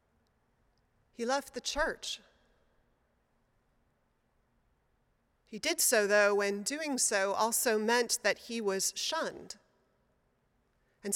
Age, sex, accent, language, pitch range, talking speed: 30-49, female, American, English, 200-255 Hz, 95 wpm